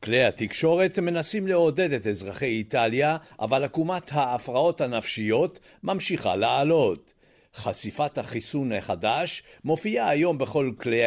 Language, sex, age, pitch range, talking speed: Hebrew, male, 50-69, 125-190 Hz, 110 wpm